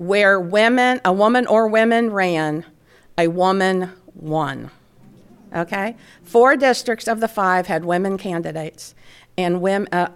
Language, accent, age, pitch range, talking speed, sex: English, American, 50-69, 185-240 Hz, 130 wpm, female